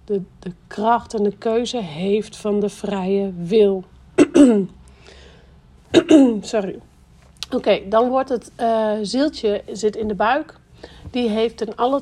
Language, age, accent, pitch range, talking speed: Dutch, 40-59, Dutch, 205-230 Hz, 135 wpm